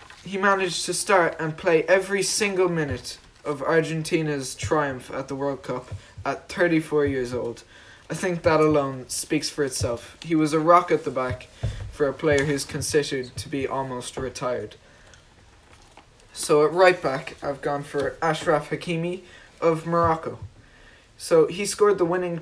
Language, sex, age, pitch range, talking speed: English, male, 20-39, 135-165 Hz, 160 wpm